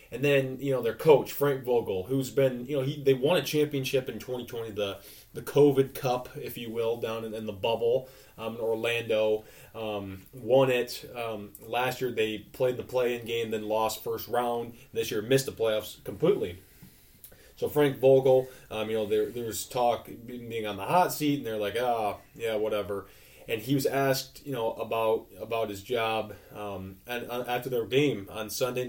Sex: male